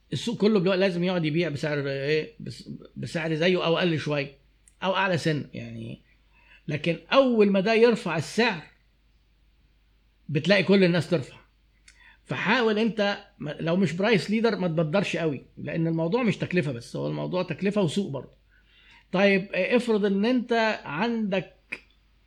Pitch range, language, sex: 155-200 Hz, Arabic, male